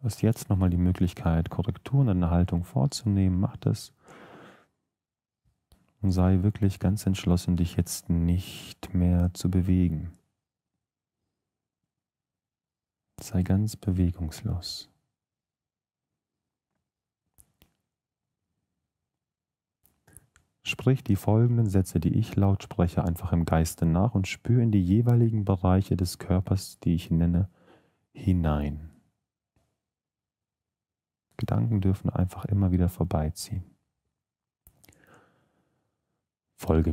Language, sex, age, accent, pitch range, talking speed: German, male, 40-59, German, 80-100 Hz, 95 wpm